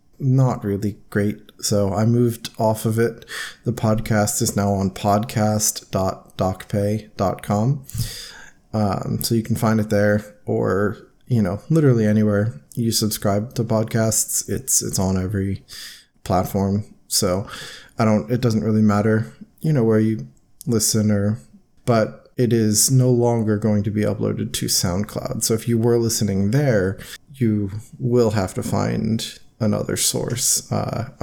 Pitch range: 105-120 Hz